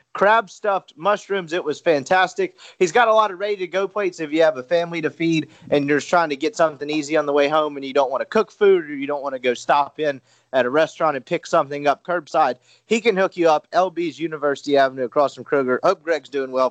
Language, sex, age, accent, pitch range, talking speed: English, male, 30-49, American, 155-215 Hz, 250 wpm